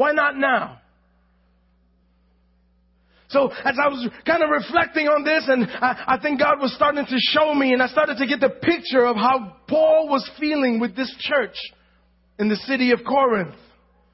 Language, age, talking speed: English, 30-49, 180 wpm